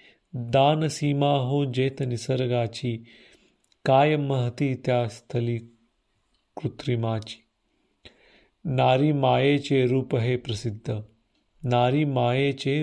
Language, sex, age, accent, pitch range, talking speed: Marathi, male, 40-59, native, 115-140 Hz, 65 wpm